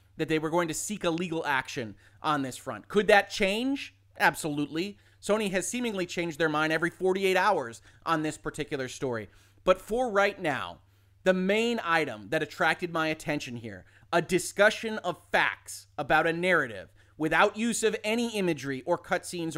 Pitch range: 130-185 Hz